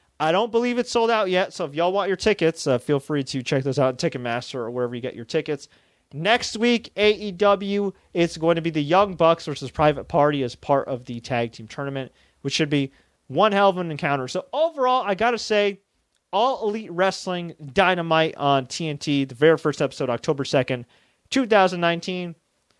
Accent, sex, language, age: American, male, English, 30-49